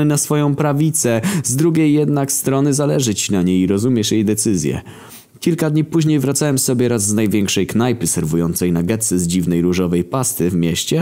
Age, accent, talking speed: 20-39, native, 175 wpm